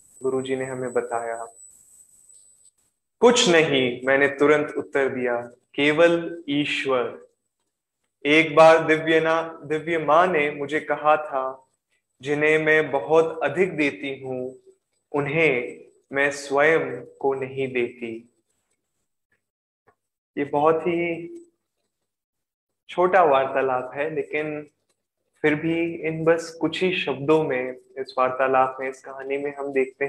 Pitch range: 130-155 Hz